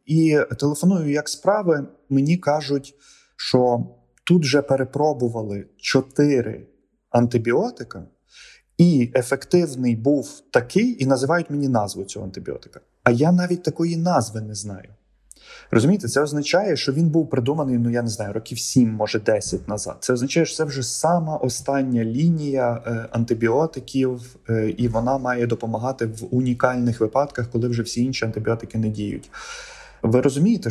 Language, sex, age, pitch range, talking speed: Ukrainian, male, 20-39, 115-145 Hz, 135 wpm